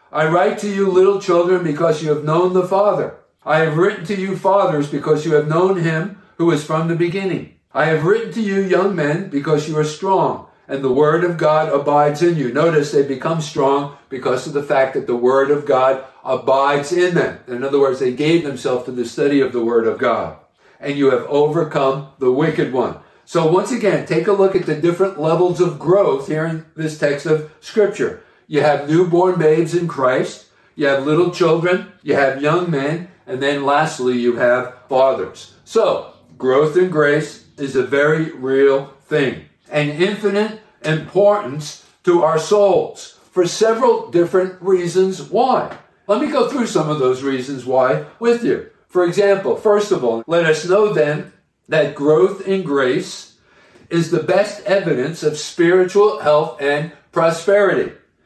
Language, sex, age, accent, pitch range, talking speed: English, male, 50-69, American, 145-185 Hz, 180 wpm